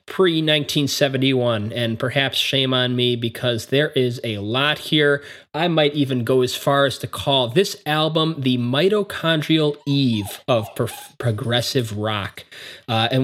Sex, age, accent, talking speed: male, 20-39, American, 140 wpm